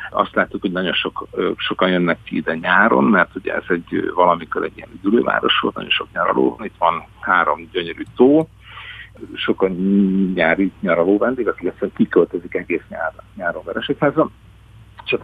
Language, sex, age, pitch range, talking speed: Hungarian, male, 60-79, 95-110 Hz, 150 wpm